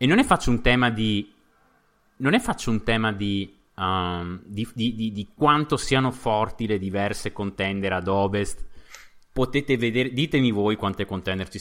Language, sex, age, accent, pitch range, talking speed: Italian, male, 20-39, native, 95-135 Hz, 170 wpm